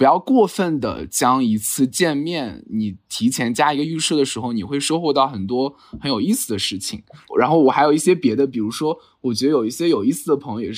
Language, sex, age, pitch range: Chinese, male, 20-39, 115-170 Hz